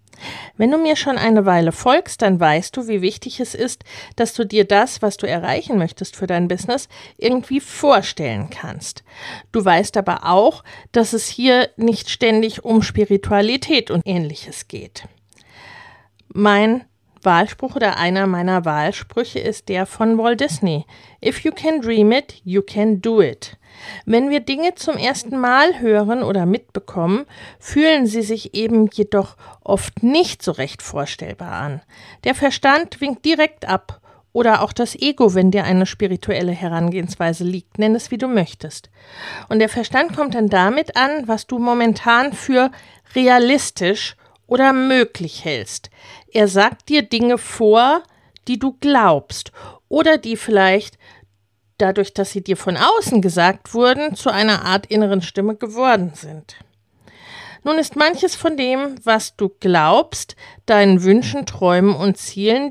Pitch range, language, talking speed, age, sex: 185-250 Hz, German, 150 wpm, 40-59, female